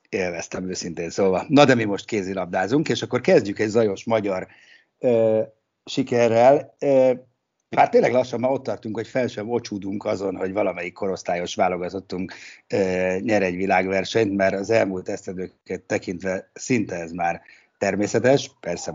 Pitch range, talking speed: 100-130 Hz, 145 wpm